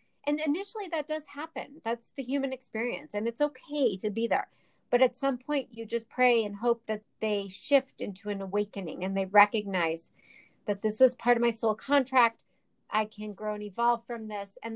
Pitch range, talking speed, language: 200-250 Hz, 200 wpm, English